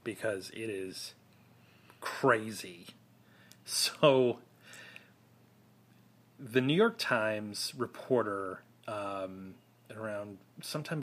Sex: male